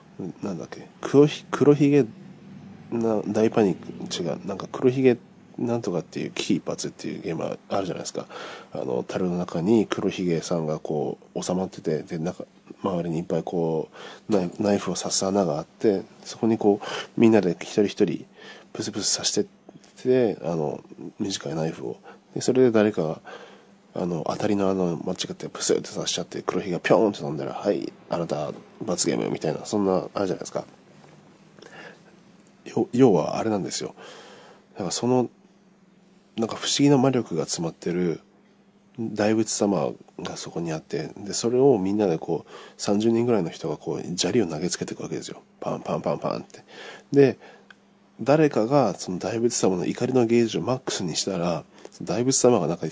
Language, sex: Japanese, male